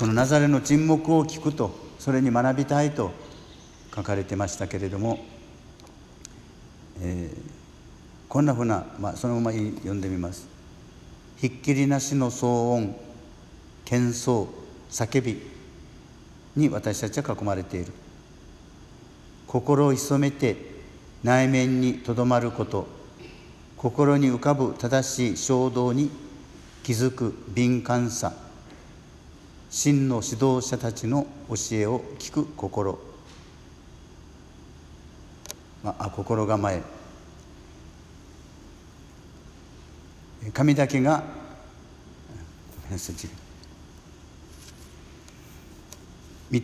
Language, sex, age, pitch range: Japanese, male, 60-79, 85-130 Hz